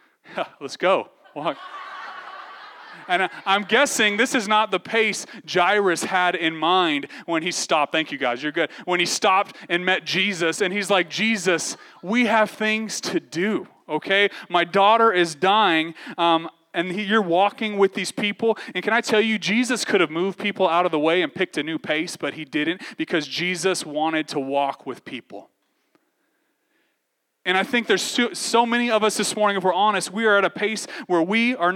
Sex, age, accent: male, 30-49, American